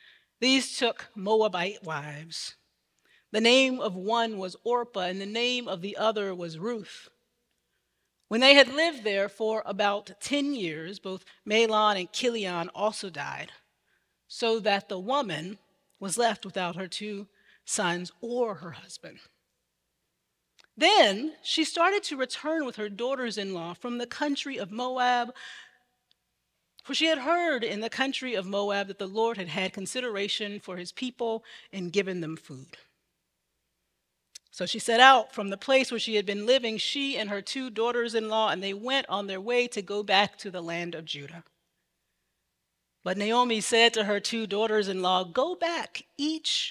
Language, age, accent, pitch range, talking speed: English, 40-59, American, 190-245 Hz, 155 wpm